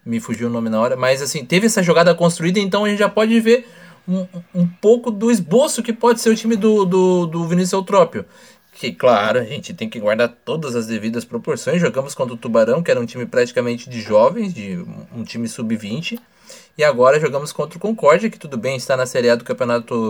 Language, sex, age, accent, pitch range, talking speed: Portuguese, male, 20-39, Brazilian, 130-185 Hz, 220 wpm